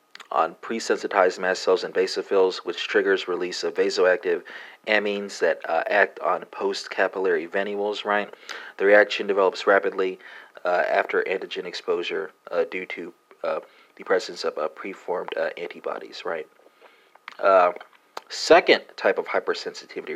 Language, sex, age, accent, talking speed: English, male, 30-49, American, 130 wpm